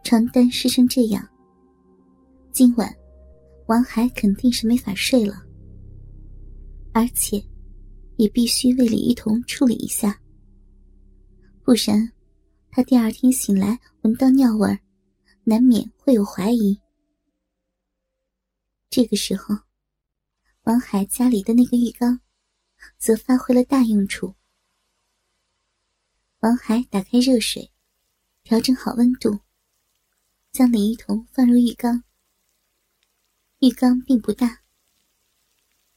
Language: Chinese